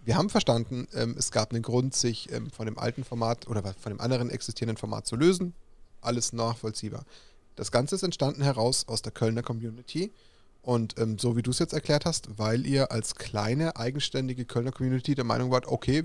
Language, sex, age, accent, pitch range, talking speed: German, male, 30-49, German, 115-145 Hz, 185 wpm